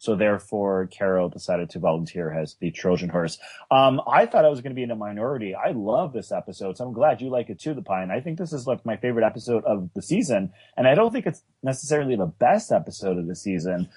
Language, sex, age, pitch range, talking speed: English, male, 30-49, 100-130 Hz, 250 wpm